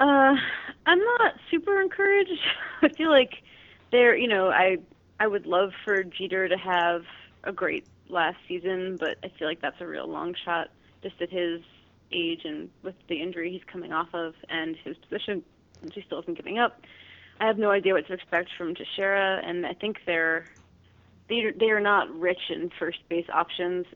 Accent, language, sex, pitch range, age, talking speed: American, English, female, 170-215 Hz, 30-49, 190 wpm